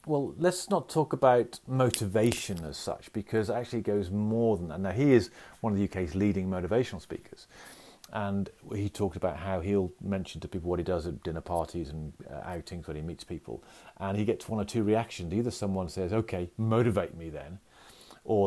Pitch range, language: 95-130 Hz, English